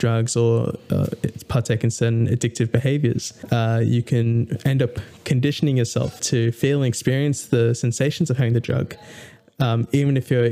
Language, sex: English, male